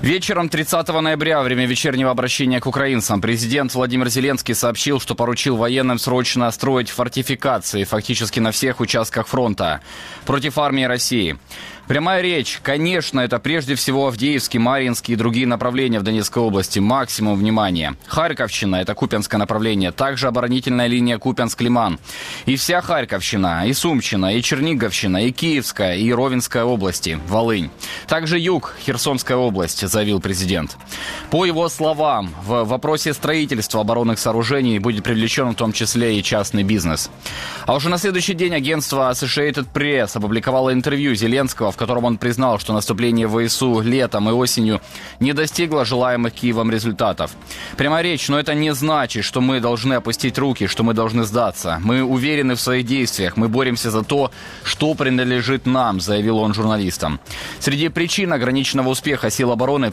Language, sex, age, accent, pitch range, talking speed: Ukrainian, male, 20-39, native, 110-140 Hz, 150 wpm